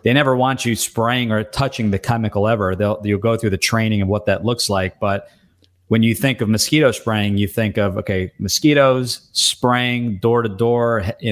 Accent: American